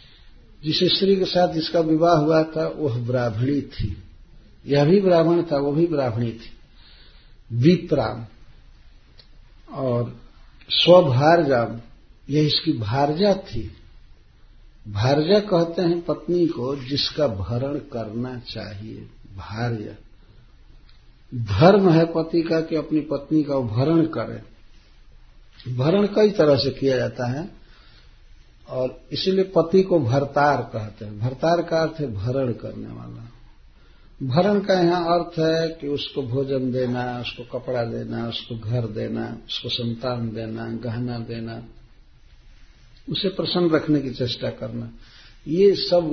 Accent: native